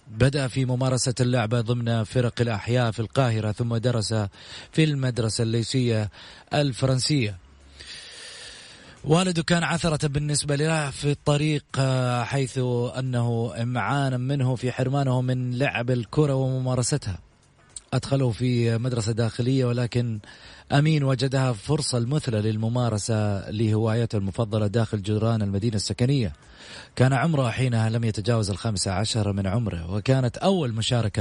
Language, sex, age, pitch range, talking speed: English, male, 30-49, 110-130 Hz, 115 wpm